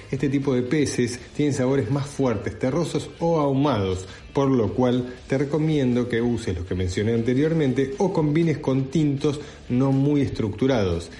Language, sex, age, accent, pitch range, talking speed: Spanish, male, 40-59, Argentinian, 110-140 Hz, 155 wpm